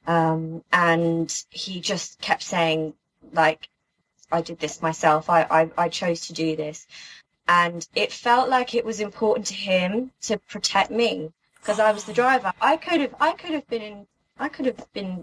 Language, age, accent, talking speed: English, 20-39, British, 180 wpm